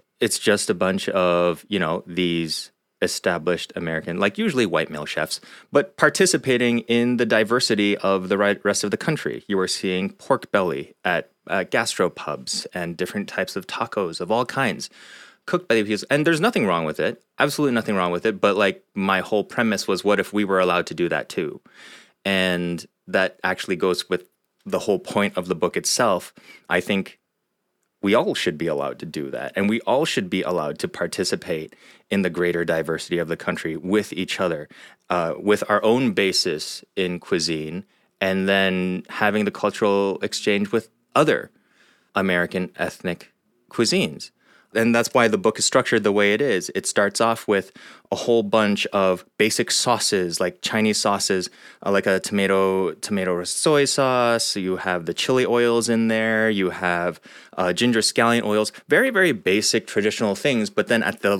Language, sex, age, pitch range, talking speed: English, male, 30-49, 95-115 Hz, 180 wpm